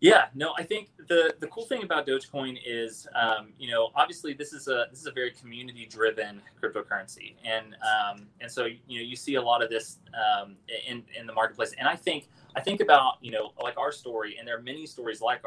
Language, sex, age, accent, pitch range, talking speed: English, male, 30-49, American, 120-155 Hz, 230 wpm